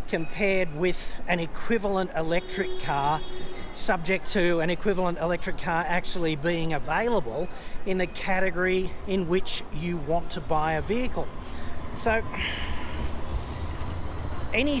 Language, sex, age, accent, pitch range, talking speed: English, male, 40-59, Australian, 160-195 Hz, 115 wpm